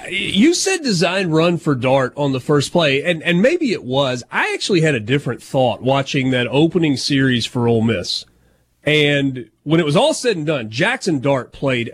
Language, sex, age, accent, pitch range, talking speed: English, male, 30-49, American, 135-165 Hz, 195 wpm